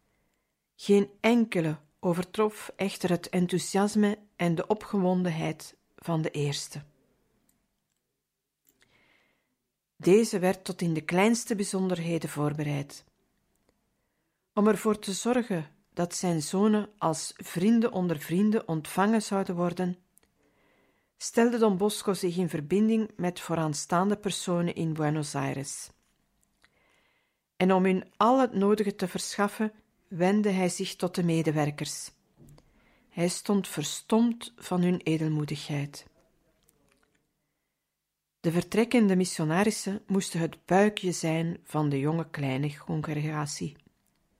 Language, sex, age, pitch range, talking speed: Dutch, female, 50-69, 160-205 Hz, 105 wpm